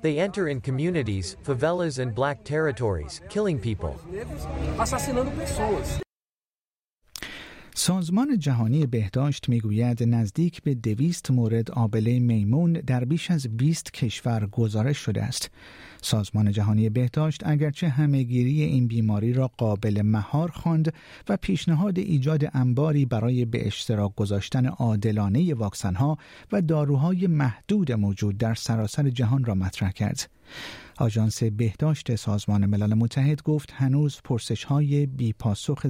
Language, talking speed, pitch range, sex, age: Persian, 115 wpm, 110-150 Hz, male, 50-69